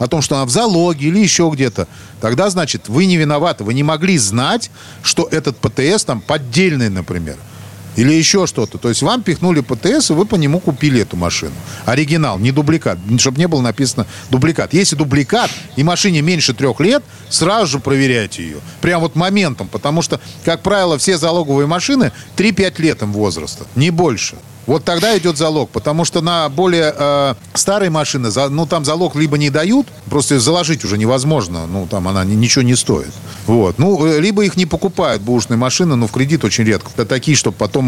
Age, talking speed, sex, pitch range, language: 40-59, 185 wpm, male, 110-160 Hz, Russian